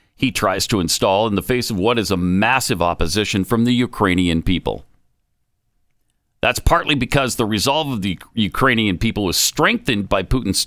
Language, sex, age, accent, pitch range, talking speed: English, male, 50-69, American, 100-135 Hz, 170 wpm